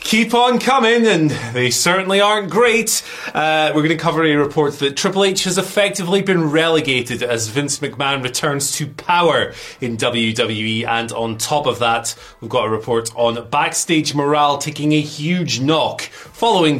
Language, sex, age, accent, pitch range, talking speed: English, male, 20-39, British, 130-175 Hz, 170 wpm